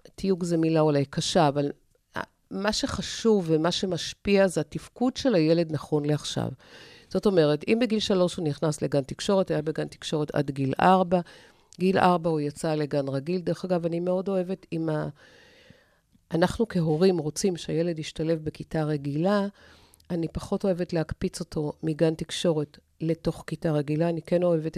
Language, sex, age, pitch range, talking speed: Hebrew, female, 50-69, 155-190 Hz, 155 wpm